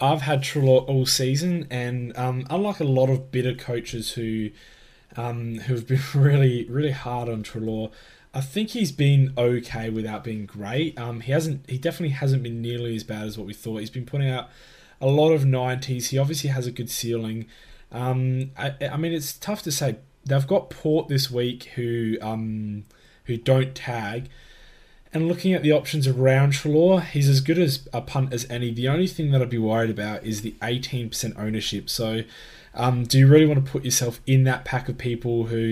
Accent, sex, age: Australian, male, 20-39